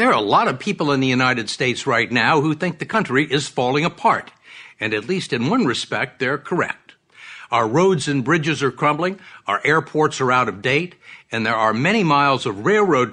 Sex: male